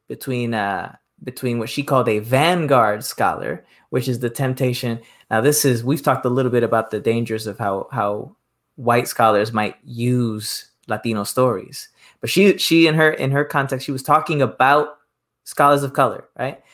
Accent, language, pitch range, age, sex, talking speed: American, English, 120-150 Hz, 20-39, male, 175 wpm